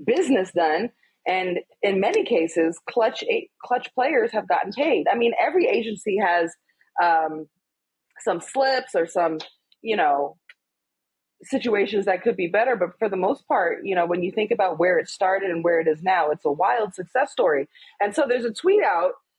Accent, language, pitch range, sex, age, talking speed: American, English, 170-265 Hz, female, 30-49, 185 wpm